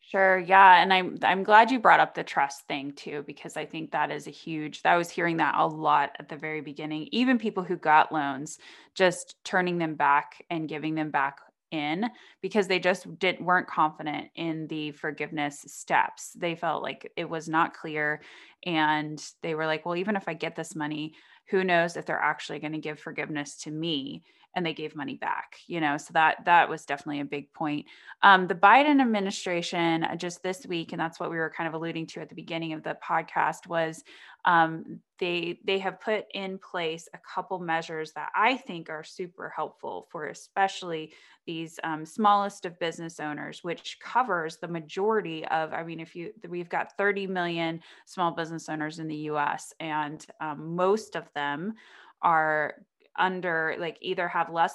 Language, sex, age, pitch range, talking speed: English, female, 20-39, 155-180 Hz, 190 wpm